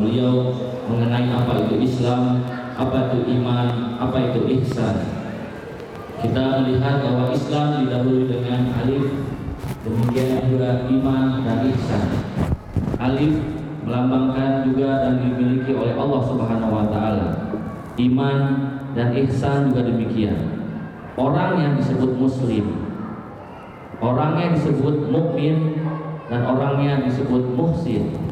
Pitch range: 120-140 Hz